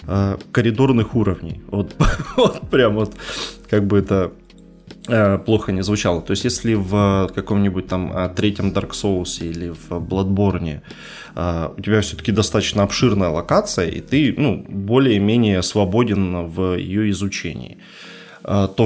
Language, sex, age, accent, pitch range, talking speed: Ukrainian, male, 20-39, native, 95-115 Hz, 125 wpm